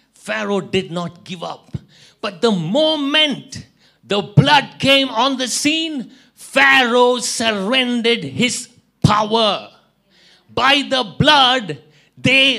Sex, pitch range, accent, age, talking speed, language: male, 215-265 Hz, Indian, 50-69, 105 wpm, English